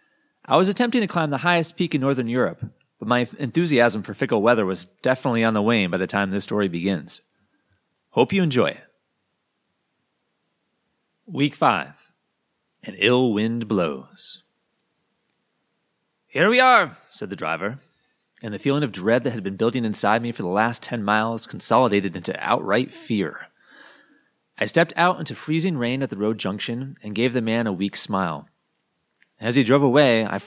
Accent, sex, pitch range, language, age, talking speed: American, male, 110-145 Hz, English, 30-49, 170 wpm